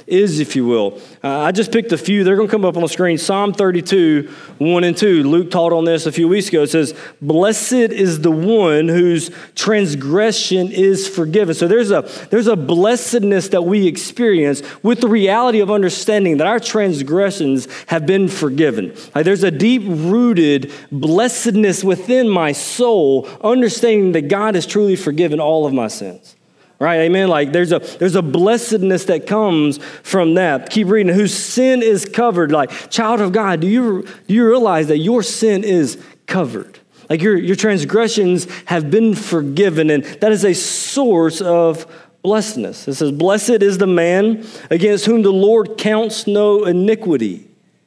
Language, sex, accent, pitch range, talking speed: English, male, American, 165-215 Hz, 175 wpm